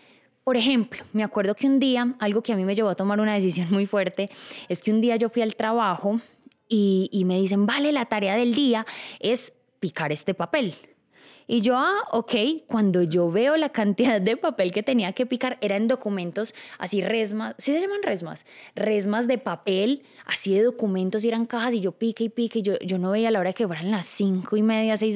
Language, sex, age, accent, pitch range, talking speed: Spanish, female, 10-29, Colombian, 190-240 Hz, 215 wpm